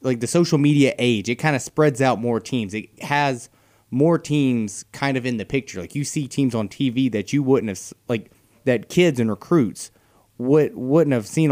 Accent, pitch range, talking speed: American, 110-140 Hz, 205 wpm